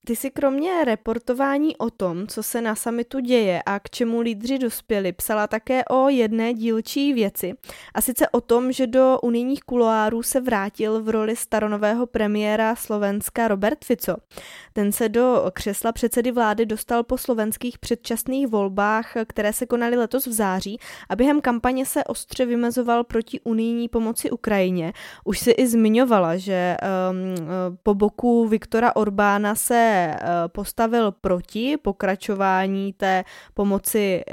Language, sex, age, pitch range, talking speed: Czech, female, 20-39, 200-245 Hz, 145 wpm